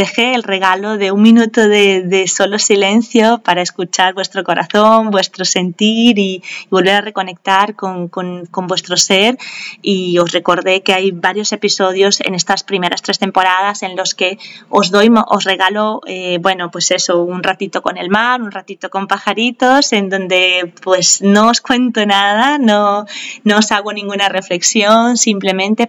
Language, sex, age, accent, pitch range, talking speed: Spanish, female, 20-39, Spanish, 190-225 Hz, 165 wpm